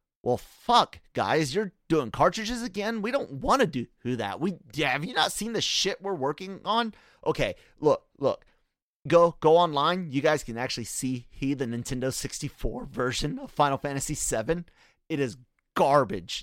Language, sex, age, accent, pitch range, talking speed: English, male, 30-49, American, 120-160 Hz, 170 wpm